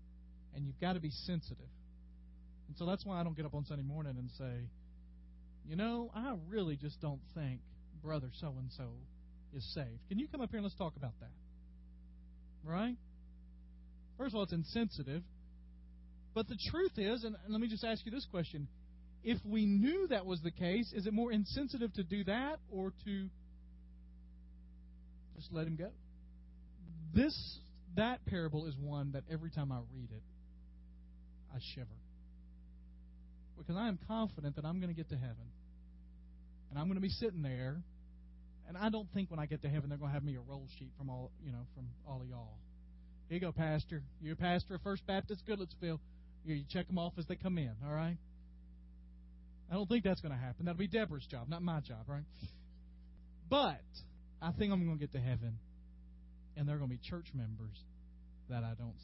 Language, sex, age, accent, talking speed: English, male, 40-59, American, 195 wpm